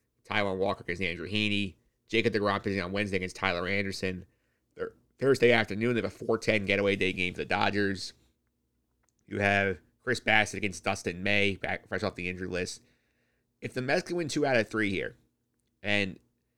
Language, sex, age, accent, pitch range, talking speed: English, male, 30-49, American, 95-115 Hz, 180 wpm